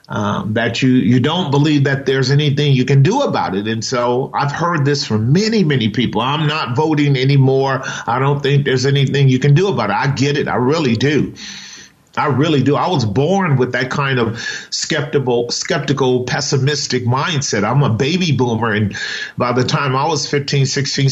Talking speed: 195 wpm